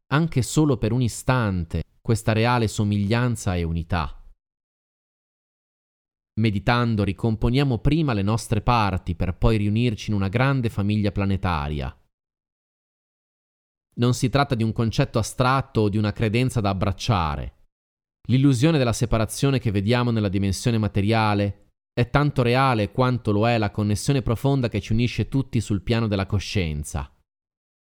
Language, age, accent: Italian, 30-49, native